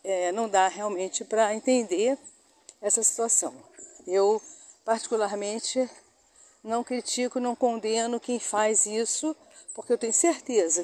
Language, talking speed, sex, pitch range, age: Portuguese, 115 wpm, female, 225-305 Hz, 50-69